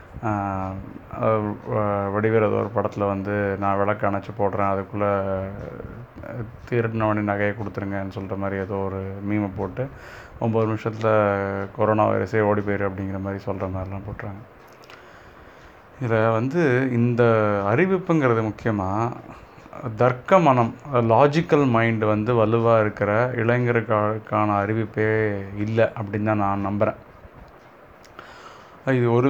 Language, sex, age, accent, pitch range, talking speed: Tamil, male, 30-49, native, 105-125 Hz, 100 wpm